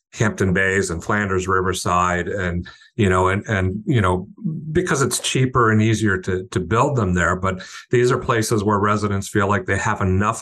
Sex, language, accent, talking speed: male, English, American, 190 wpm